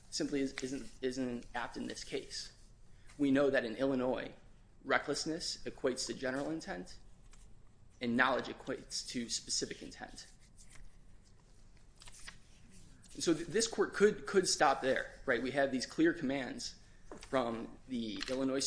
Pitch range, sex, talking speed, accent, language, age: 120-150 Hz, male, 130 wpm, American, English, 20-39